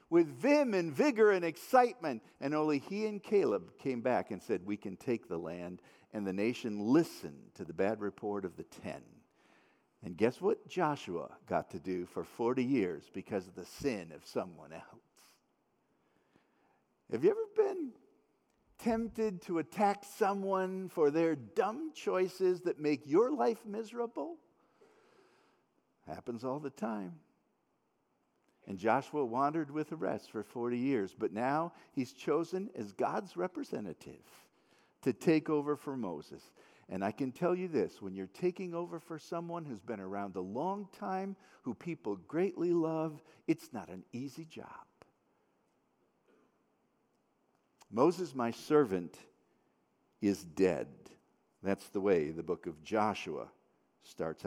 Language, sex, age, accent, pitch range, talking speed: English, male, 50-69, American, 120-195 Hz, 145 wpm